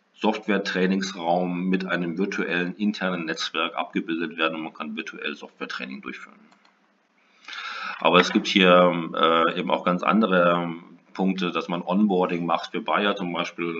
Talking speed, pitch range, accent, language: 145 wpm, 85-95 Hz, German, German